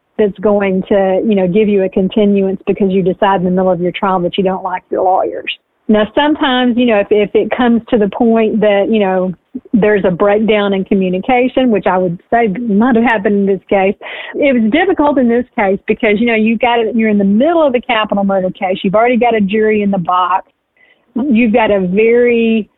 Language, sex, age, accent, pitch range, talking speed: English, female, 40-59, American, 195-230 Hz, 225 wpm